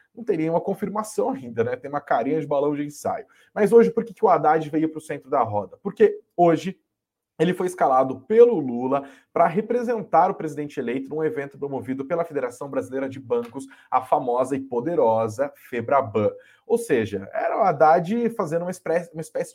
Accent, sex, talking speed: Brazilian, male, 180 wpm